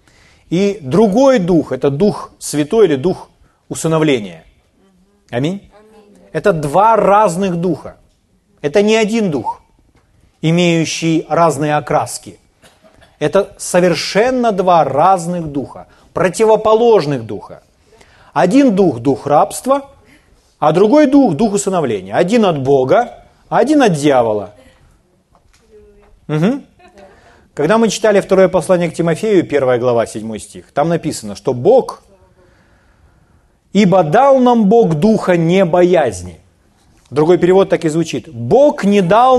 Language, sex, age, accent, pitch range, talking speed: Ukrainian, male, 30-49, native, 130-205 Hz, 110 wpm